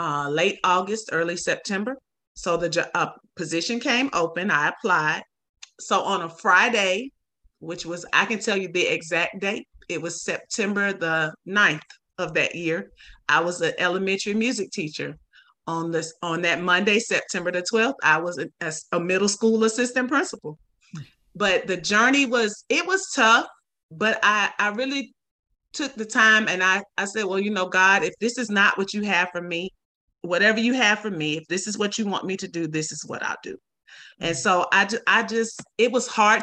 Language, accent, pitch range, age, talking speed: English, American, 170-220 Hz, 30-49, 190 wpm